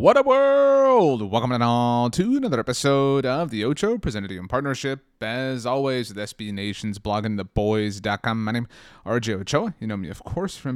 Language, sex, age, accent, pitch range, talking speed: English, male, 30-49, American, 110-130 Hz, 190 wpm